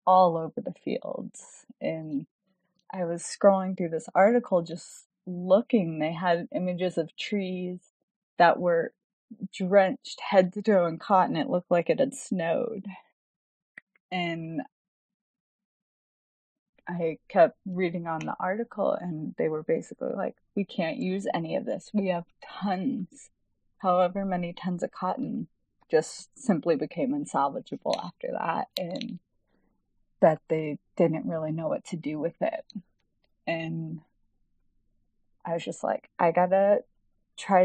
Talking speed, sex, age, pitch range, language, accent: 130 wpm, female, 20-39, 160-195 Hz, English, American